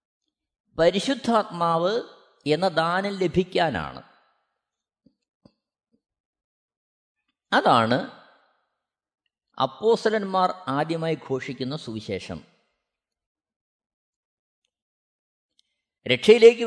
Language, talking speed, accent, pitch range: Malayalam, 35 wpm, native, 150-210 Hz